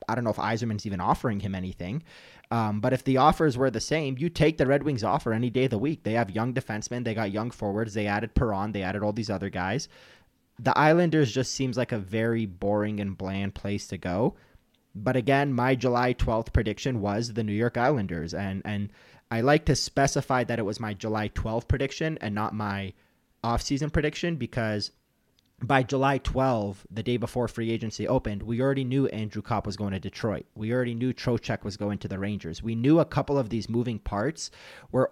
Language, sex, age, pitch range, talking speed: English, male, 30-49, 100-125 Hz, 210 wpm